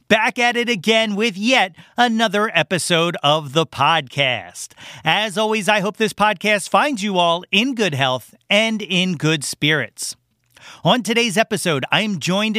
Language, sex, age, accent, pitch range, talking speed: English, male, 40-59, American, 155-225 Hz, 155 wpm